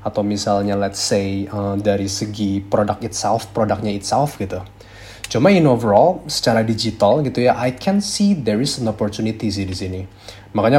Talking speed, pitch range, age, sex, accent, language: 160 wpm, 100-120 Hz, 20-39, male, native, Indonesian